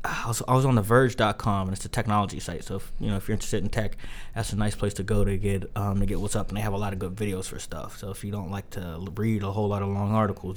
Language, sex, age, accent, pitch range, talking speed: English, male, 20-39, American, 95-110 Hz, 310 wpm